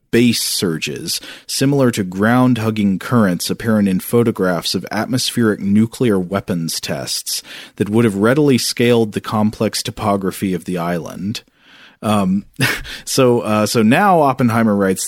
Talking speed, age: 125 wpm, 40-59